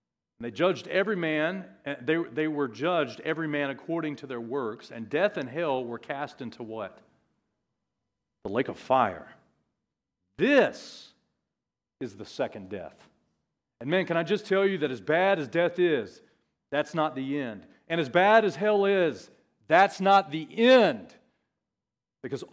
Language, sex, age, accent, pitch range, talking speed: English, male, 40-59, American, 140-195 Hz, 160 wpm